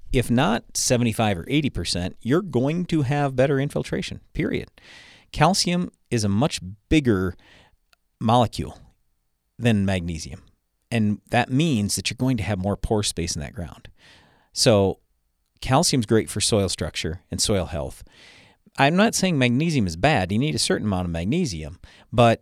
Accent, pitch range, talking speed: American, 95-130 Hz, 155 wpm